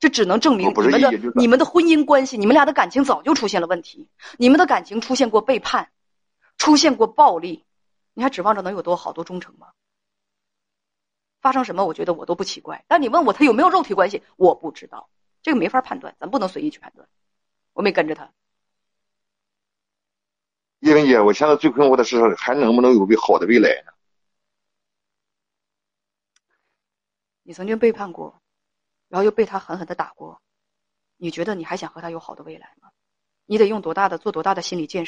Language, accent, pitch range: Chinese, native, 170-250 Hz